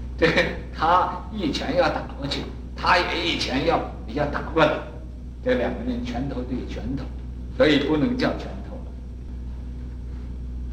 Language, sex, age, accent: Chinese, male, 60-79, native